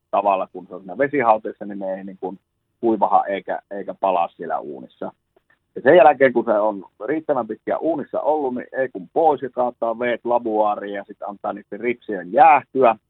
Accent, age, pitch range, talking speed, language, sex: native, 30-49, 100-120 Hz, 180 wpm, Finnish, male